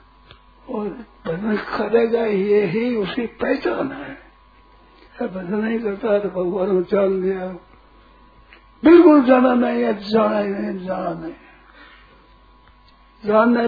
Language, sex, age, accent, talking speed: Hindi, male, 60-79, native, 115 wpm